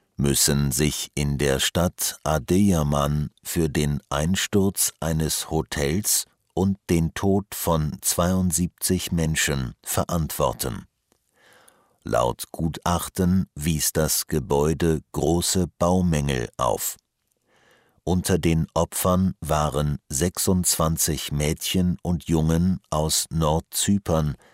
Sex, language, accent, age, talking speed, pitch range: male, English, German, 50-69, 90 wpm, 75-90 Hz